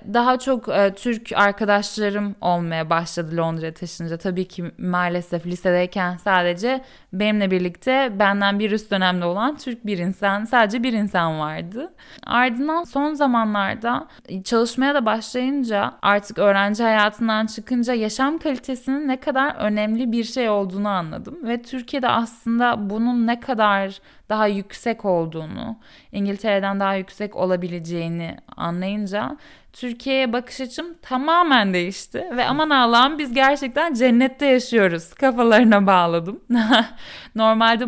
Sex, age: female, 10-29